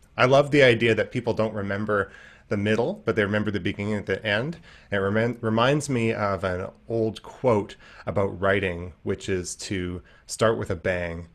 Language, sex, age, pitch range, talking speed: English, male, 30-49, 95-115 Hz, 180 wpm